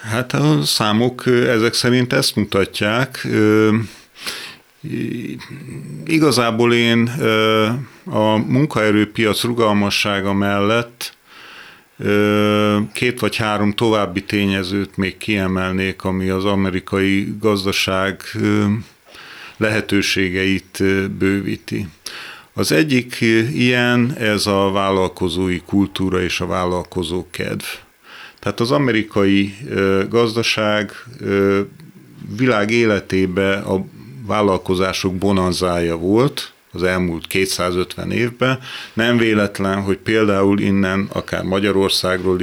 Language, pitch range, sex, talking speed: Hungarian, 95-110 Hz, male, 80 wpm